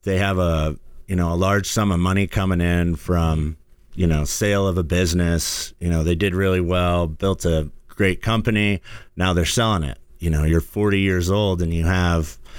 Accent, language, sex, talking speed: American, English, male, 200 wpm